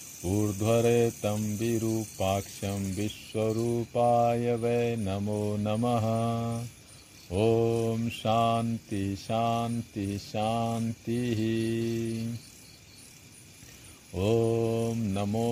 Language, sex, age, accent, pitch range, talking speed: Hindi, male, 50-69, native, 105-115 Hz, 45 wpm